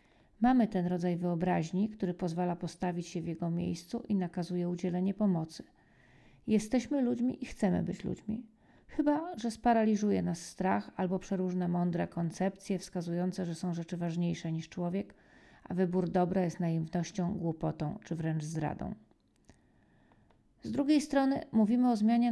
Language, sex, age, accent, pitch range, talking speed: Polish, female, 40-59, native, 175-210 Hz, 140 wpm